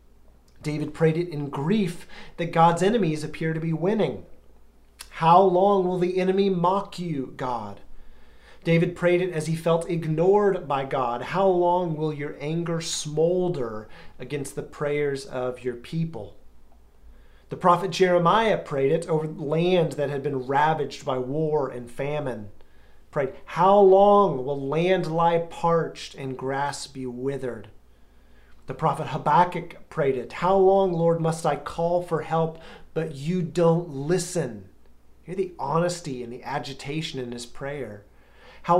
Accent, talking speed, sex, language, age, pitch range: American, 145 wpm, male, English, 30-49, 135-175 Hz